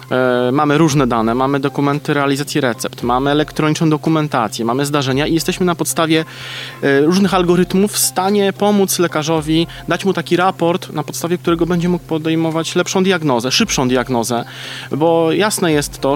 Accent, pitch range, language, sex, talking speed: native, 135-170 Hz, Polish, male, 150 wpm